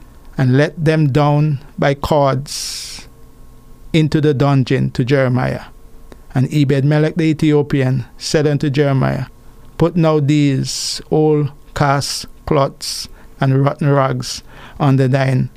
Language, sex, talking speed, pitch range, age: English, male, 110 wpm, 130-150 Hz, 50-69